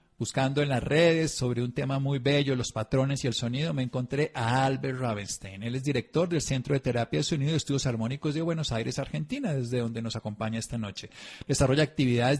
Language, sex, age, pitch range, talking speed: Spanish, male, 50-69, 120-160 Hz, 210 wpm